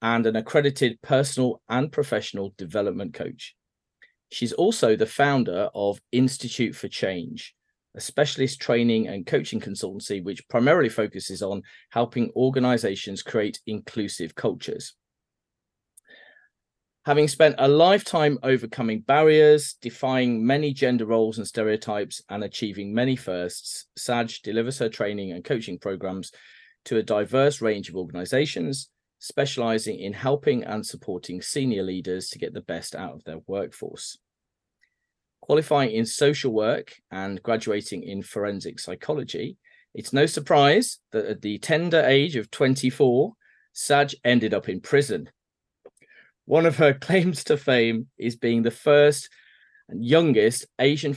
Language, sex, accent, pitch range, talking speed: English, male, British, 105-140 Hz, 130 wpm